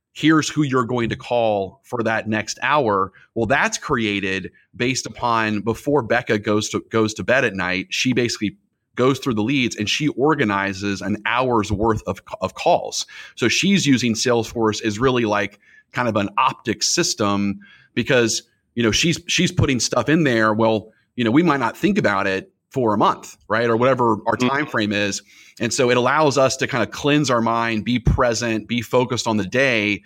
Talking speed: 195 wpm